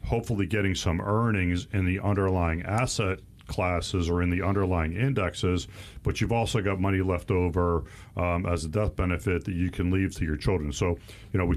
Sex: male